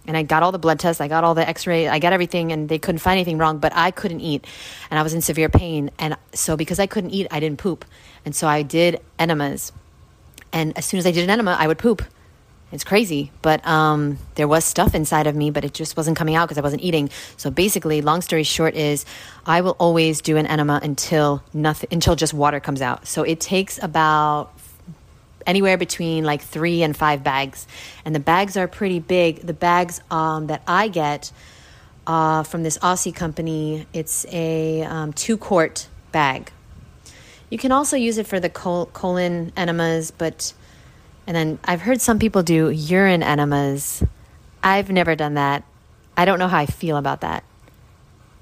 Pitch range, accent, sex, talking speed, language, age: 150-175 Hz, American, female, 195 wpm, English, 30-49